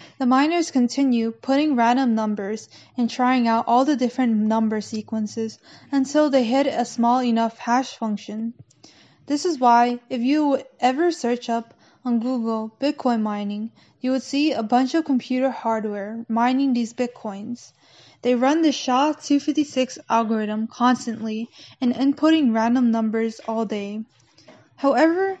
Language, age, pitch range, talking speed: English, 10-29, 225-270 Hz, 140 wpm